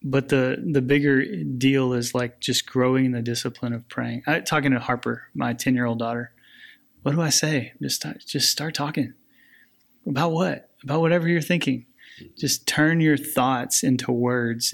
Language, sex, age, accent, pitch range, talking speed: English, male, 20-39, American, 120-145 Hz, 175 wpm